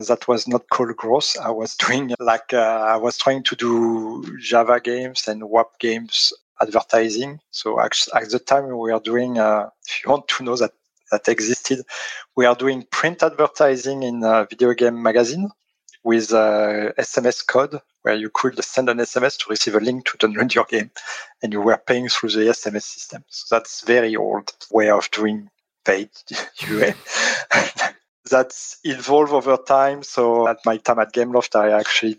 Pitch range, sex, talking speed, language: 110-125 Hz, male, 175 wpm, English